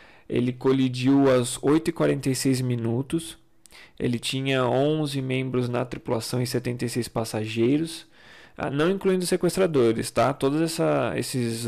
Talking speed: 105 wpm